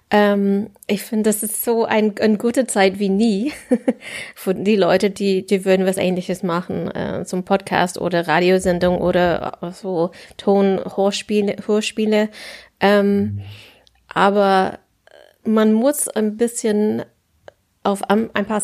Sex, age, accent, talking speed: female, 20-39, German, 125 wpm